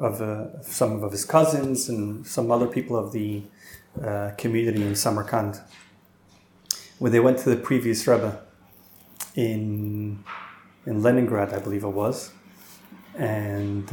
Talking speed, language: 135 wpm, English